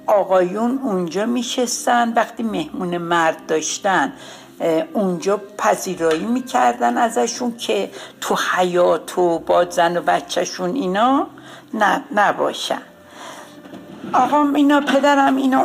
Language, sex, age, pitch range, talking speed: Persian, female, 60-79, 180-265 Hz, 90 wpm